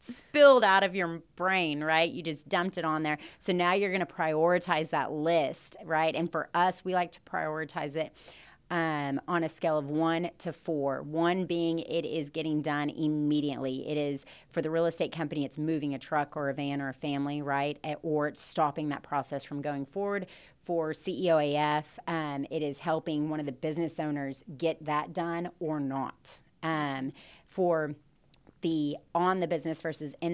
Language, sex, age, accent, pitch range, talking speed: English, female, 30-49, American, 150-170 Hz, 190 wpm